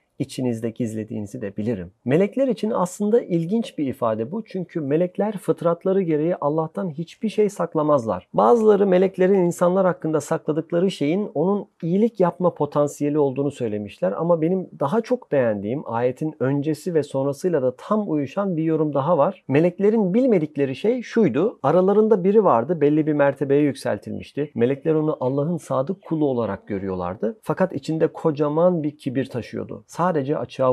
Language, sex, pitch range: Turkish, male, 130-180 Hz